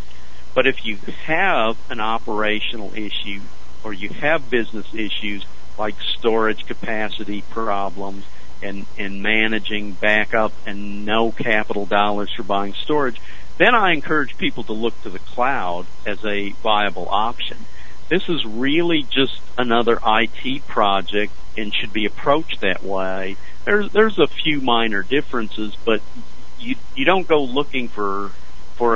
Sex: male